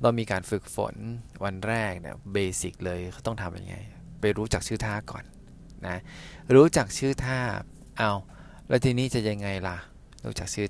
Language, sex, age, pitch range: Thai, male, 20-39, 95-120 Hz